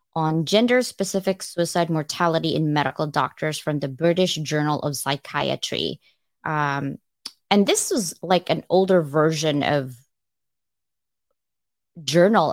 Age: 20-39